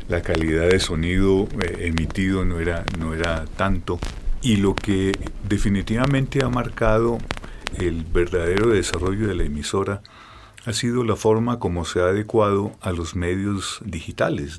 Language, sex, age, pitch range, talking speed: Spanish, male, 40-59, 85-105 Hz, 140 wpm